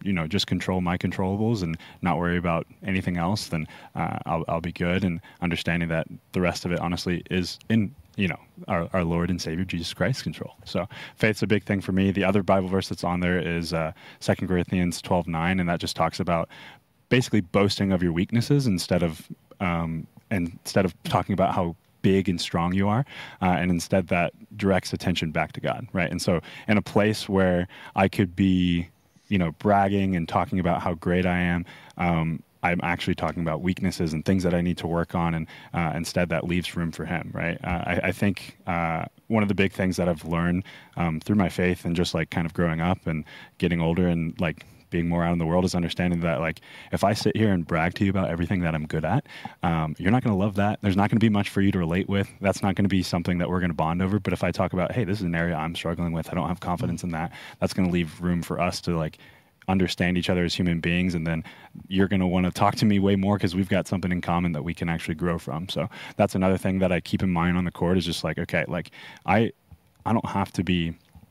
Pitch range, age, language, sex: 85-95 Hz, 20-39, English, male